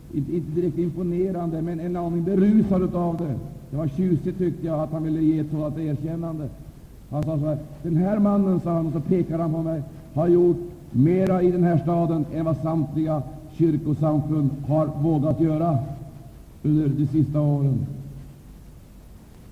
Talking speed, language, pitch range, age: 170 wpm, Swedish, 145-175 Hz, 60-79